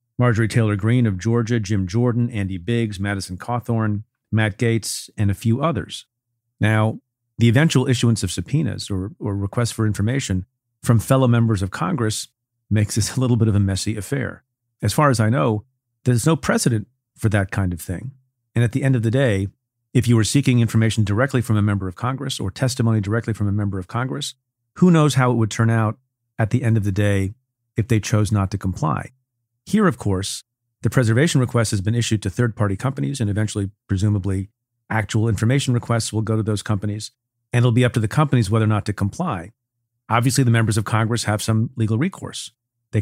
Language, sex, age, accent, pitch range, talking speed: English, male, 40-59, American, 105-125 Hz, 200 wpm